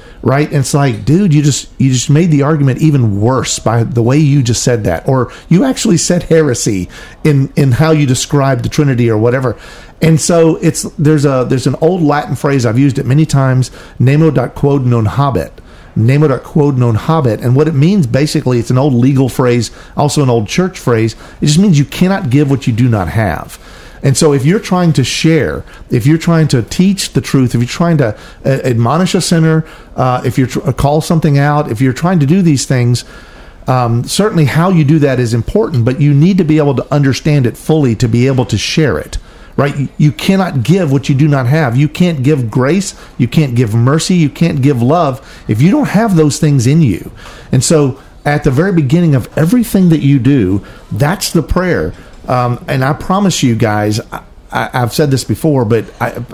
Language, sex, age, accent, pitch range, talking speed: English, male, 50-69, American, 120-160 Hz, 215 wpm